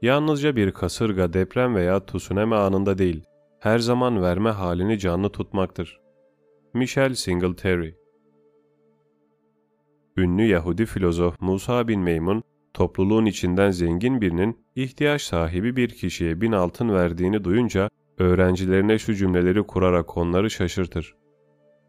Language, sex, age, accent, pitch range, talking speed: Turkish, male, 30-49, native, 85-110 Hz, 110 wpm